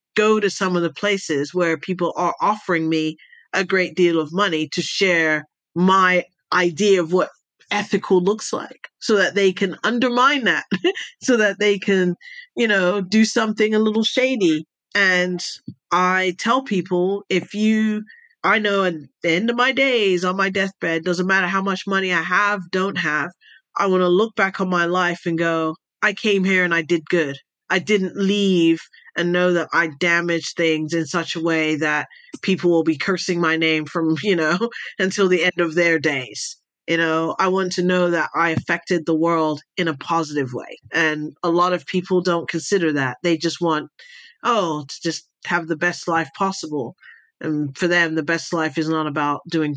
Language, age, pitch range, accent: English, 40-59, 165-195 Hz, American